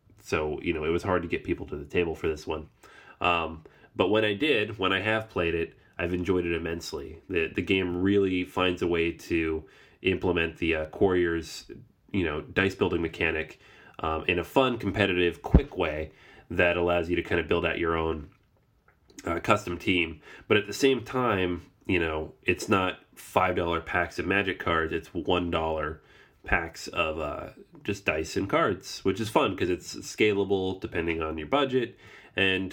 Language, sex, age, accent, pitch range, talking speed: English, male, 30-49, American, 85-105 Hz, 185 wpm